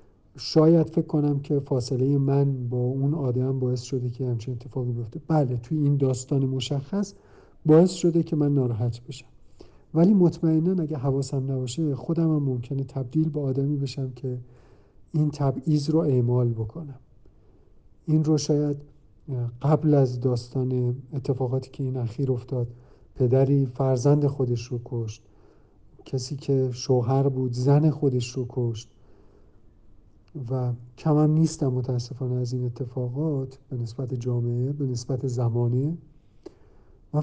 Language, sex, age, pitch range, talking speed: Arabic, male, 50-69, 125-150 Hz, 135 wpm